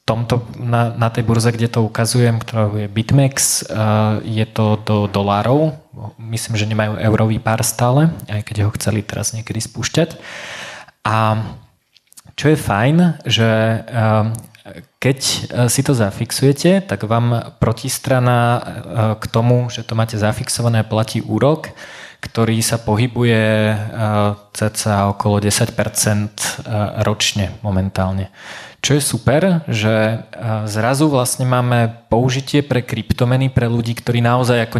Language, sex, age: Slovak, male, 20-39